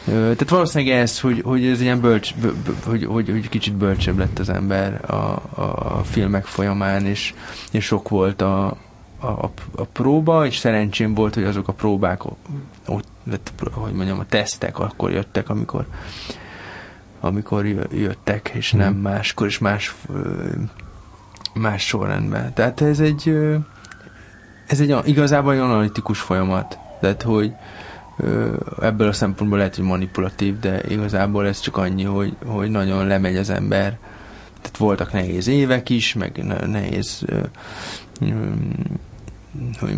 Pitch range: 95-115 Hz